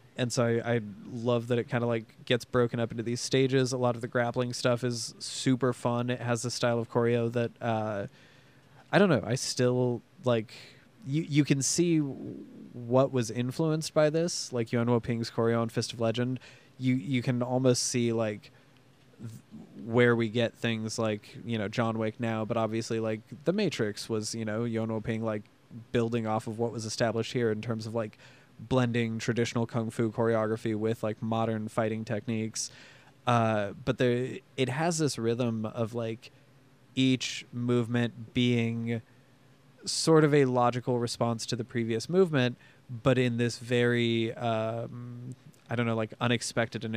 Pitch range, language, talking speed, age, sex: 115-130 Hz, English, 175 wpm, 20-39, male